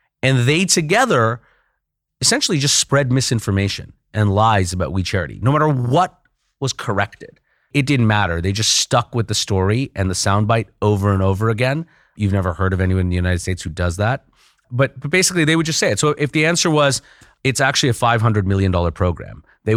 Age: 30-49